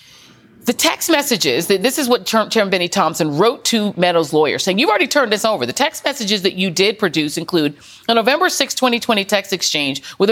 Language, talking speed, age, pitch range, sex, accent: English, 205 wpm, 40-59, 175-245 Hz, female, American